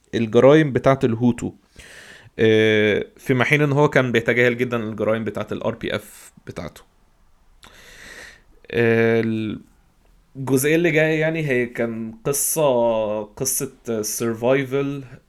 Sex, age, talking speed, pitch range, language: male, 20-39, 85 wpm, 105-125 Hz, Arabic